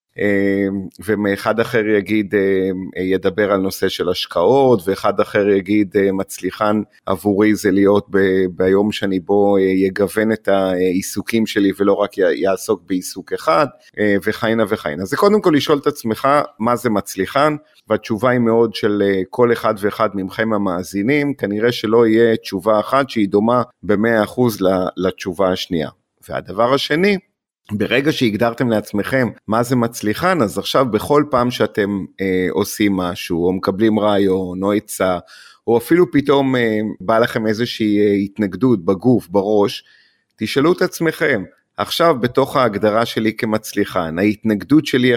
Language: Hebrew